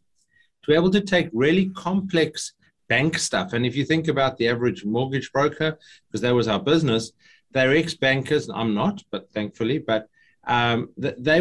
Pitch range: 125-160 Hz